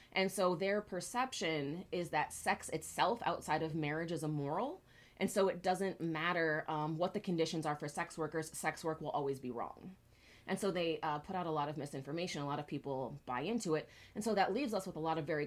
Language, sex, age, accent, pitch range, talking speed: English, female, 20-39, American, 150-185 Hz, 230 wpm